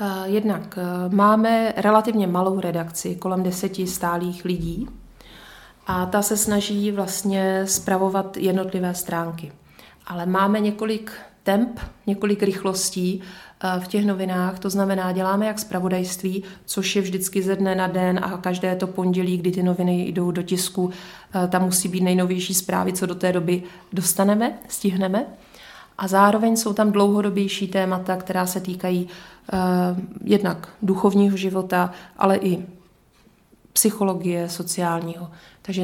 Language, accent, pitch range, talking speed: Czech, native, 180-195 Hz, 125 wpm